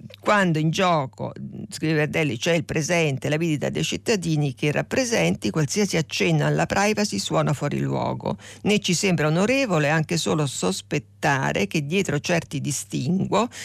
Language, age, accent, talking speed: Italian, 50-69, native, 145 wpm